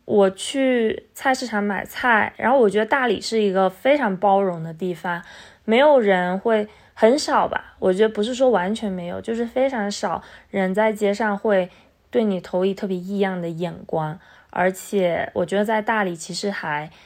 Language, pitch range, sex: Chinese, 185-230 Hz, female